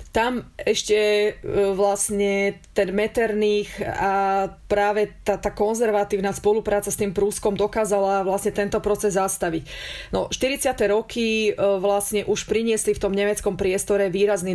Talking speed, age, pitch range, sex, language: 125 wpm, 30-49, 195-210 Hz, female, Slovak